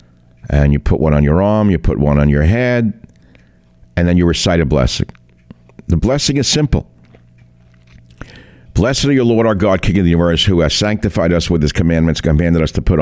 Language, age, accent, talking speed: English, 60-79, American, 205 wpm